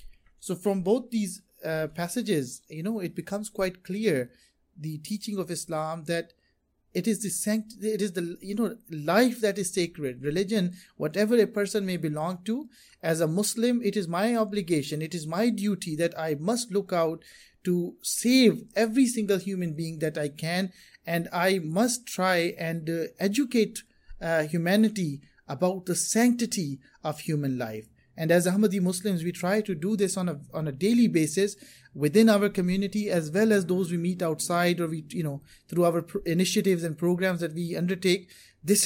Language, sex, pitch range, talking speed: English, male, 160-205 Hz, 180 wpm